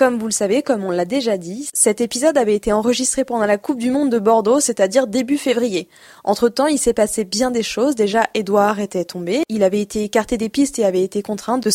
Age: 20-39